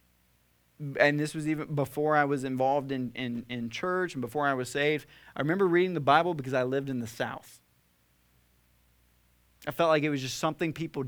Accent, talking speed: American, 190 wpm